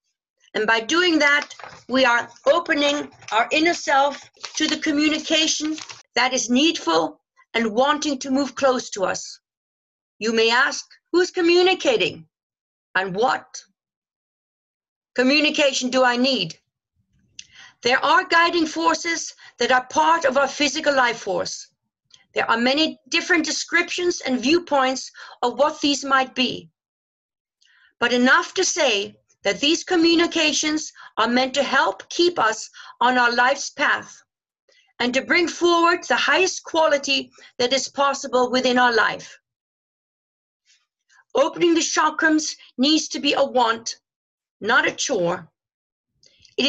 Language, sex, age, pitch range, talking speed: English, female, 50-69, 250-325 Hz, 130 wpm